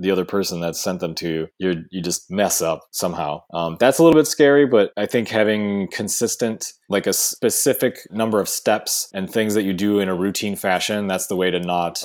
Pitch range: 90-110 Hz